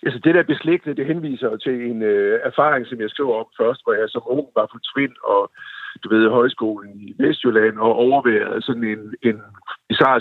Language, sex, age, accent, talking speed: Danish, male, 60-79, native, 195 wpm